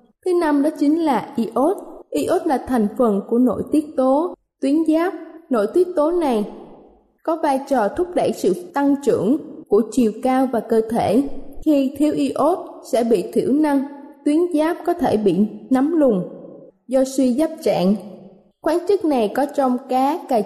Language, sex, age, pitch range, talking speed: Vietnamese, female, 20-39, 235-300 Hz, 175 wpm